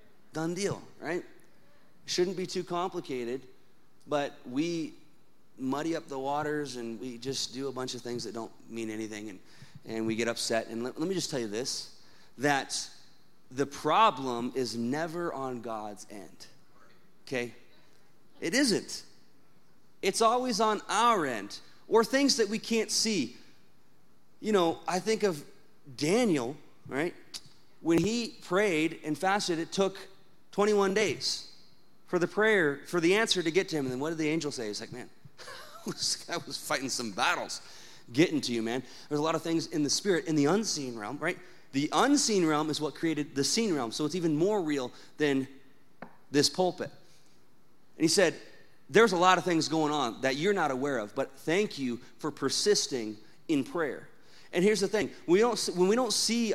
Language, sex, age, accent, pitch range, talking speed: English, male, 30-49, American, 135-195 Hz, 175 wpm